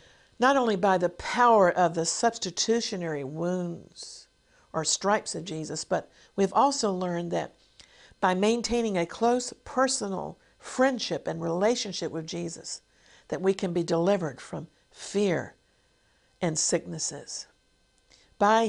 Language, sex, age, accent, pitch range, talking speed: English, female, 50-69, American, 165-235 Hz, 120 wpm